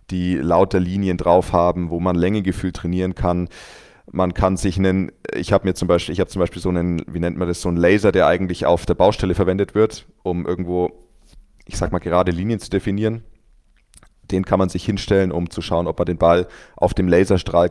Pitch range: 85-95 Hz